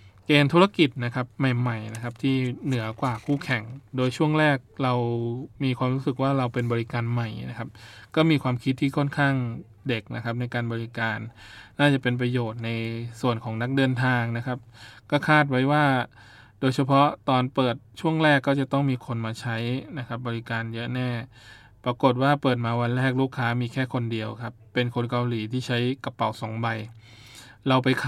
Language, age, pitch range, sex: Thai, 20-39, 115-135 Hz, male